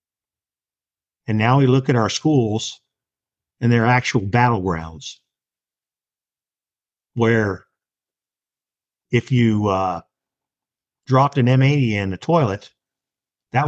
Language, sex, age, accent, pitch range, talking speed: English, male, 50-69, American, 110-135 Hz, 95 wpm